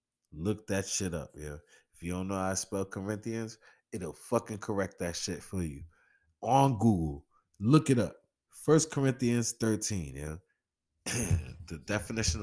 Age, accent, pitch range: 20-39, American, 75-95 Hz